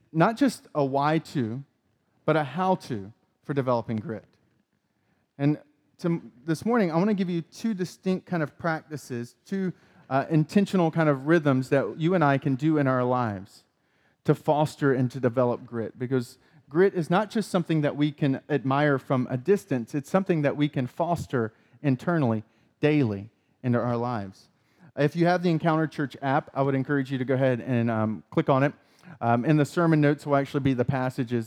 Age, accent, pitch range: 30-49, American, 125-160 Hz